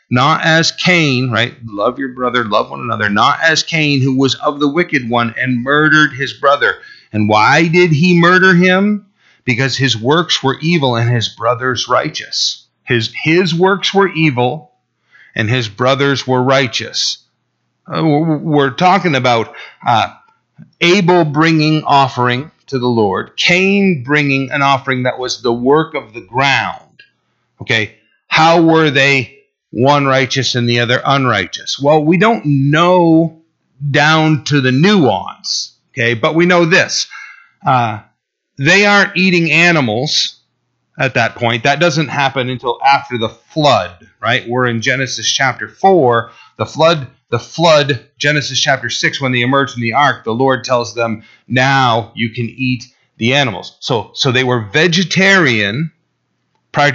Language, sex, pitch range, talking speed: English, male, 125-160 Hz, 150 wpm